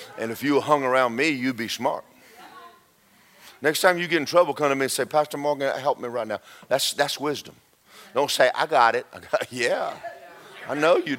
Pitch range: 130-205 Hz